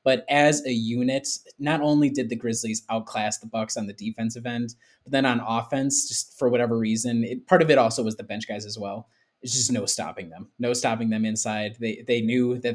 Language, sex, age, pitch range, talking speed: English, male, 20-39, 120-145 Hz, 225 wpm